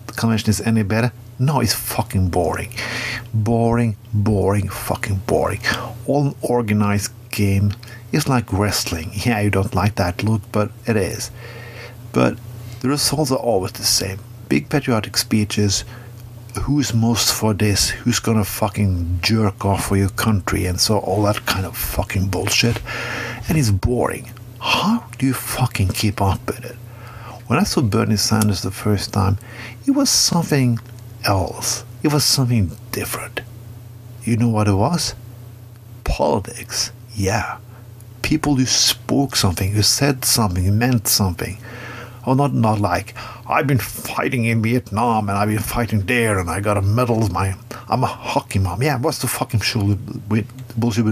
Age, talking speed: 50-69, 155 wpm